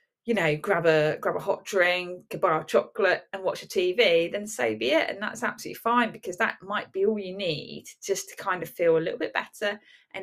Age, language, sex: 20-39, English, female